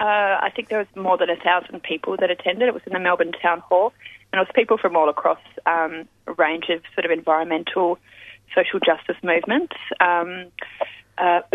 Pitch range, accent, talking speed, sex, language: 170-210 Hz, Australian, 190 wpm, female, English